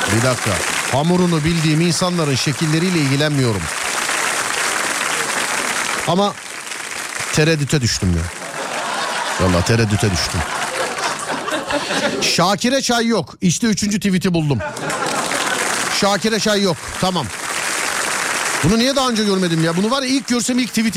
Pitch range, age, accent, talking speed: 115-180 Hz, 50-69, native, 105 wpm